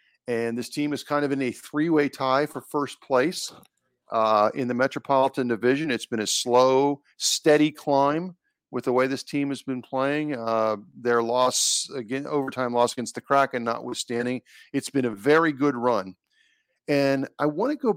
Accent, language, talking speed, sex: American, English, 175 wpm, male